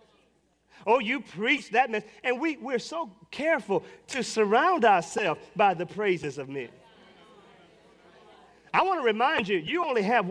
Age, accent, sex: 40-59, American, male